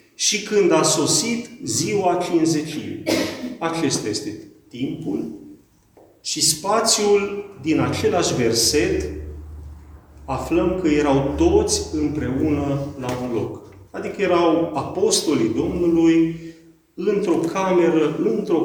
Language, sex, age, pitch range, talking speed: Romanian, male, 40-59, 140-185 Hz, 95 wpm